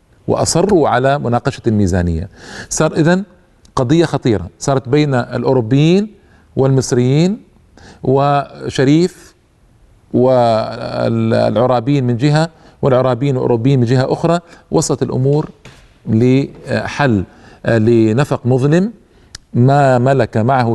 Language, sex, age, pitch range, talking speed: Arabic, male, 50-69, 110-155 Hz, 85 wpm